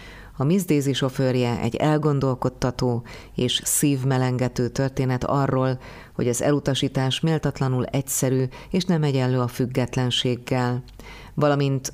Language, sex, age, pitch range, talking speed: Hungarian, female, 30-49, 125-140 Hz, 95 wpm